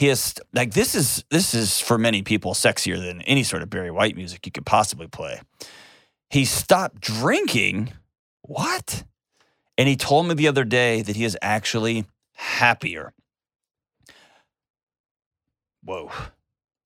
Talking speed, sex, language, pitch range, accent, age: 140 wpm, male, English, 100-120 Hz, American, 30-49